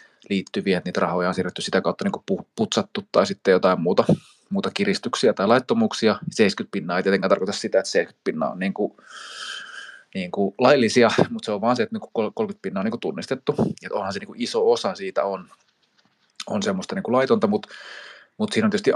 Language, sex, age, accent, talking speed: Finnish, male, 30-49, native, 190 wpm